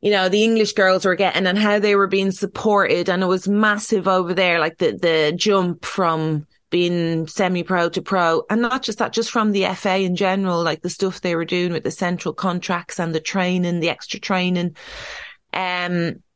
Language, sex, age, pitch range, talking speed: English, female, 30-49, 170-200 Hz, 205 wpm